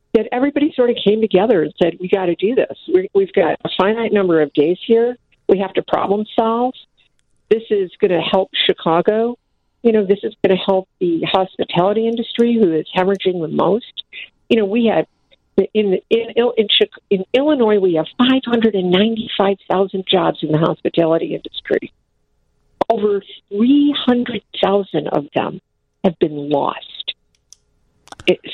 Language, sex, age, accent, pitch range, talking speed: English, female, 50-69, American, 180-225 Hz, 150 wpm